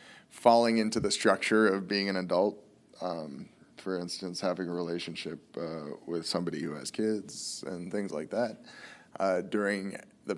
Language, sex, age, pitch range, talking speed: English, male, 20-39, 95-115 Hz, 155 wpm